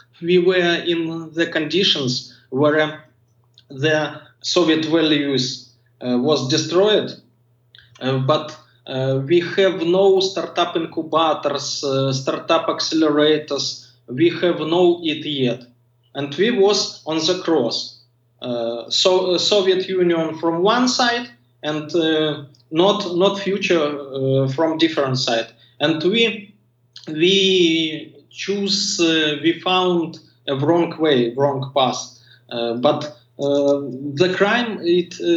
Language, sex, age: English, male, 20-39